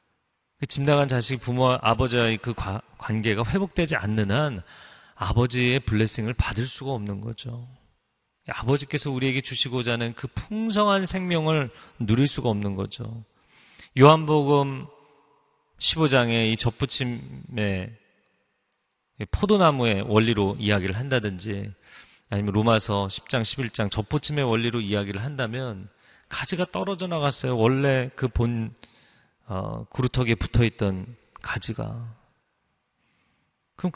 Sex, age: male, 40-59